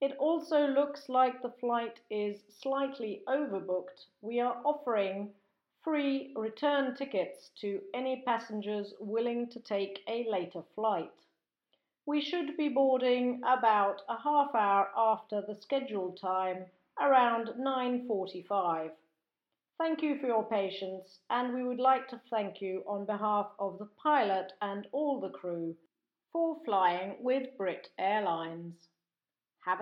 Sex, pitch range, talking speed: female, 200-275 Hz, 130 wpm